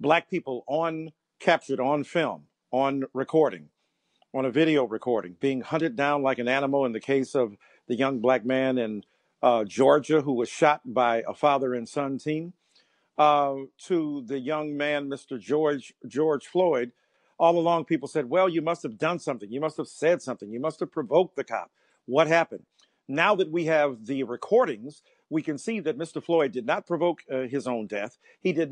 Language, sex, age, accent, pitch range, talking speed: English, male, 50-69, American, 135-170 Hz, 190 wpm